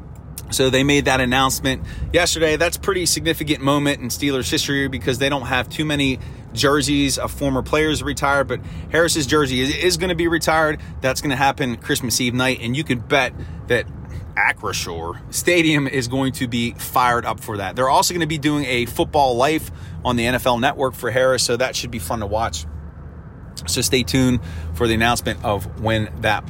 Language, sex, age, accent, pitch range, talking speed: English, male, 30-49, American, 115-150 Hz, 195 wpm